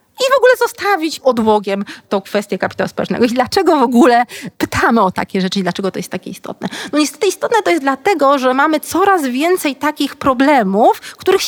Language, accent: Polish, native